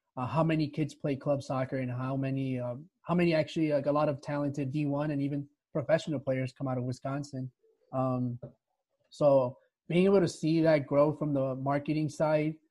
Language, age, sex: English, 20-39, male